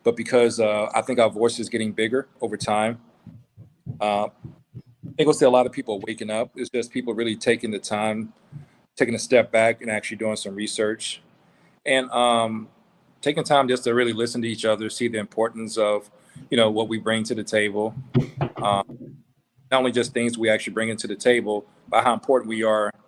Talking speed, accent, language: 205 wpm, American, English